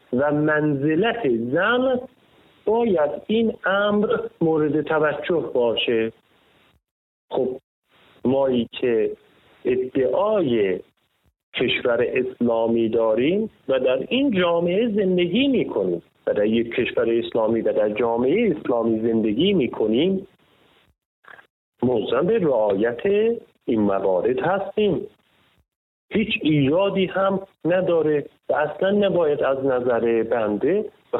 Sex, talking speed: male, 100 wpm